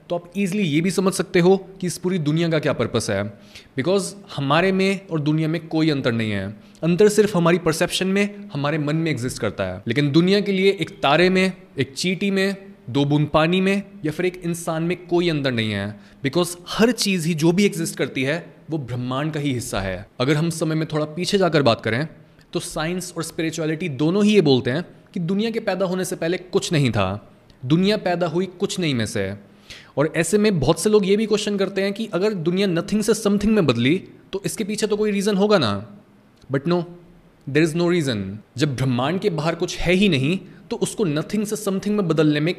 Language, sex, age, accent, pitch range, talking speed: Hindi, male, 20-39, native, 145-195 Hz, 225 wpm